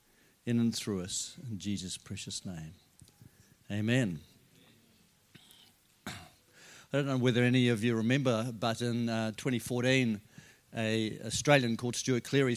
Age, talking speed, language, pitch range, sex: 50-69, 125 wpm, English, 110-130 Hz, male